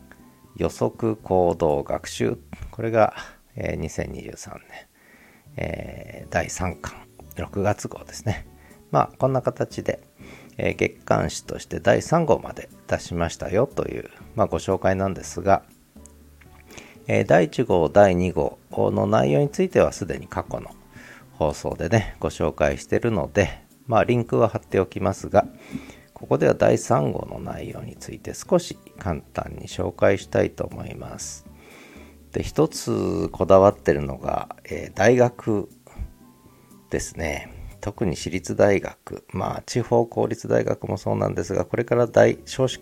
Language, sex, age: Japanese, male, 40-59